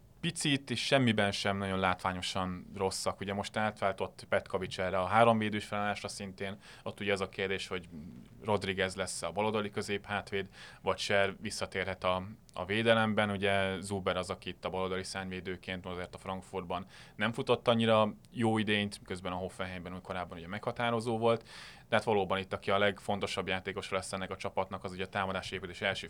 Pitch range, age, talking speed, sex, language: 95-105 Hz, 20-39, 170 wpm, male, Hungarian